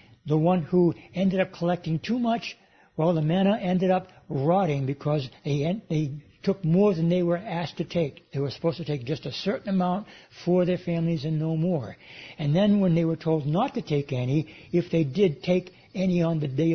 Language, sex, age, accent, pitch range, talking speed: English, male, 60-79, American, 150-190 Hz, 210 wpm